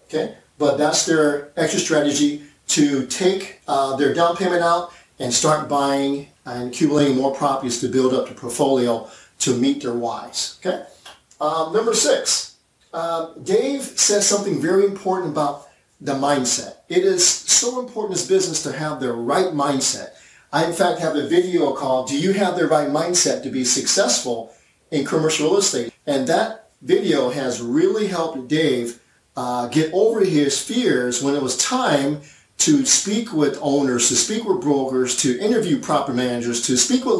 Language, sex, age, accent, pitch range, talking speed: English, male, 40-59, American, 135-185 Hz, 170 wpm